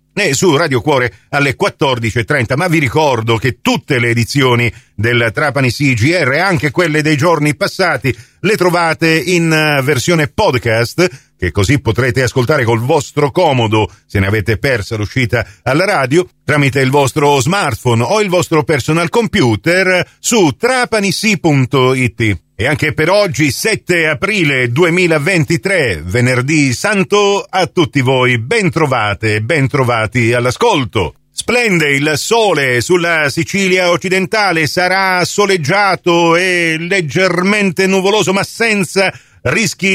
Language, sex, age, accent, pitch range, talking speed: Italian, male, 50-69, native, 125-180 Hz, 120 wpm